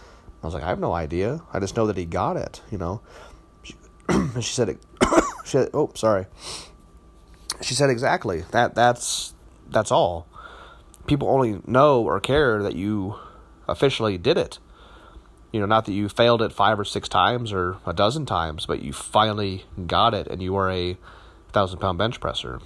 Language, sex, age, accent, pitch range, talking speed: English, male, 30-49, American, 90-120 Hz, 185 wpm